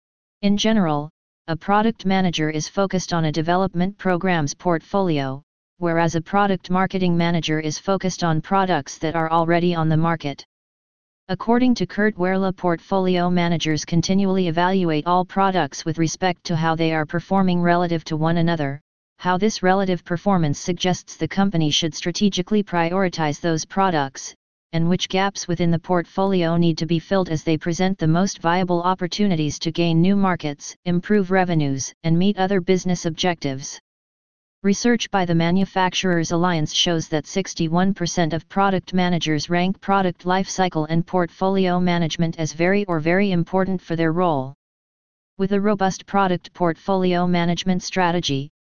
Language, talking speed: English, 150 wpm